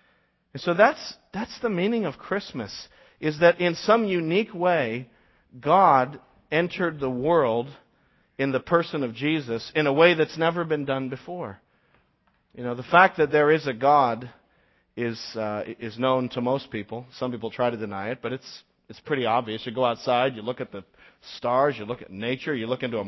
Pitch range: 125-150 Hz